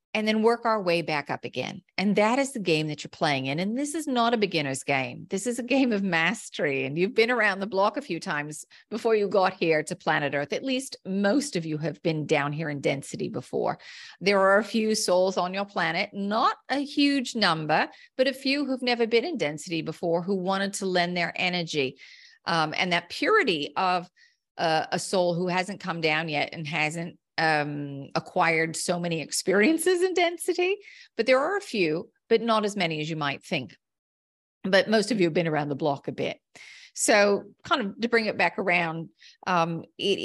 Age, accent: 40-59, American